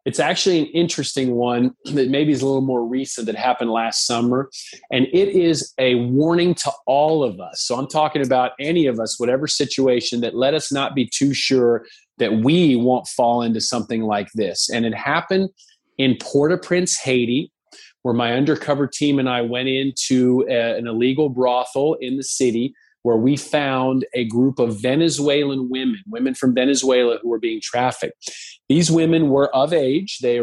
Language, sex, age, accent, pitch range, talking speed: English, male, 30-49, American, 125-150 Hz, 175 wpm